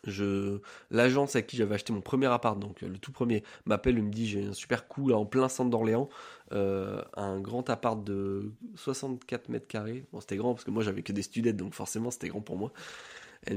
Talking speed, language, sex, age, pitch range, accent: 220 wpm, French, male, 20-39, 100-125 Hz, French